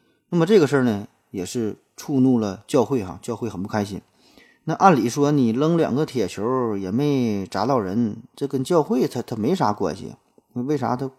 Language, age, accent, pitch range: Chinese, 20-39, native, 105-135 Hz